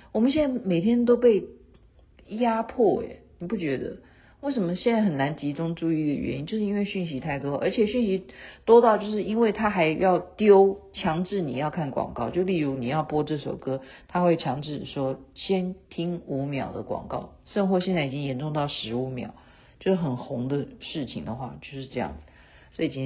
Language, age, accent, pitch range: Chinese, 50-69, native, 135-200 Hz